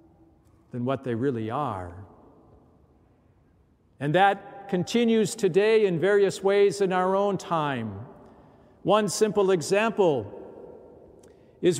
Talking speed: 100 wpm